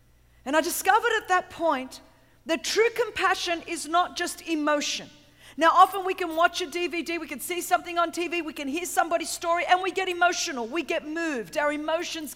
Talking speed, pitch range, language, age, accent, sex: 195 wpm, 320-365 Hz, English, 40-59, Australian, female